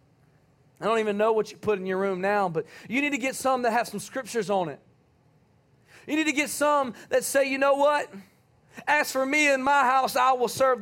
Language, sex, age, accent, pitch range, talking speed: English, male, 40-59, American, 215-290 Hz, 235 wpm